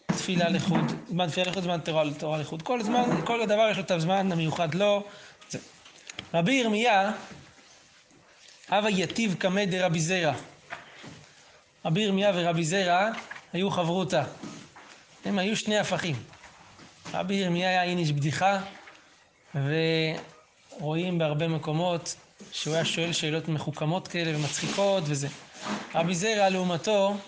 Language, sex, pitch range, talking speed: Hebrew, male, 160-190 Hz, 115 wpm